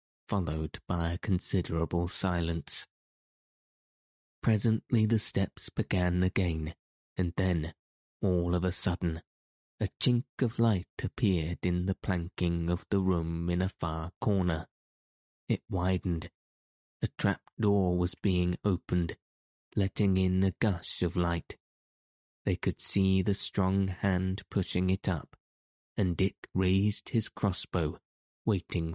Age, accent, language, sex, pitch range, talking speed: 20-39, British, English, male, 85-100 Hz, 120 wpm